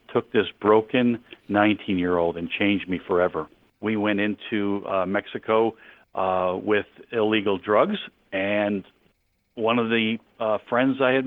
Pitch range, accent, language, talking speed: 100-120 Hz, American, English, 135 wpm